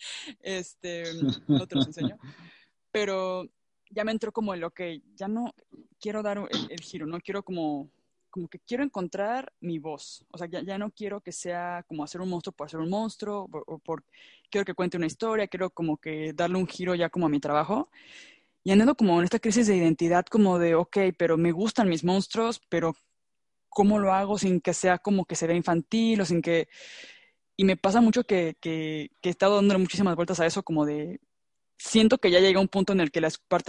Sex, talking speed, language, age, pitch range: female, 215 wpm, Spanish, 20-39, 165-205 Hz